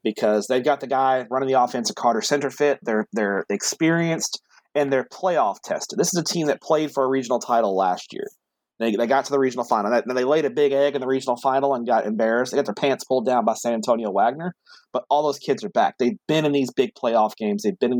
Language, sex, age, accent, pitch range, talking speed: English, male, 30-49, American, 115-155 Hz, 255 wpm